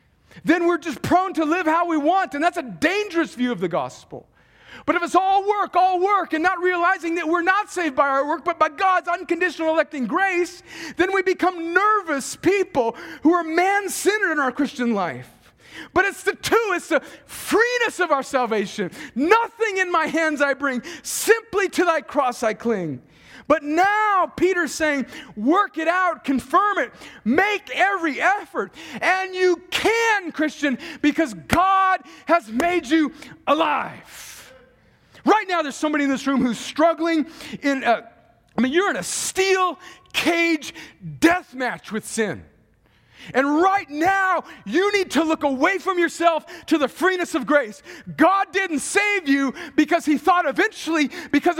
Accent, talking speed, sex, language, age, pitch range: American, 165 wpm, male, English, 40-59, 285-365 Hz